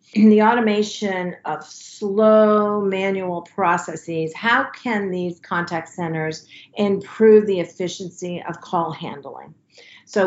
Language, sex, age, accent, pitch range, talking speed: English, female, 50-69, American, 175-220 Hz, 110 wpm